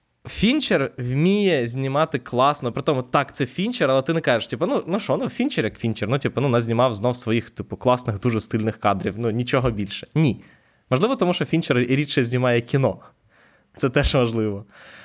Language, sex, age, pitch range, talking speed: Ukrainian, male, 20-39, 120-150 Hz, 185 wpm